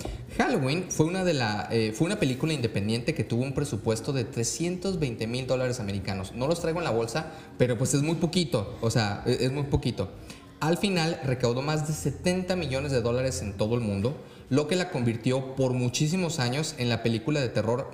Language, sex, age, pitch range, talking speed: Spanish, male, 30-49, 110-145 Hz, 185 wpm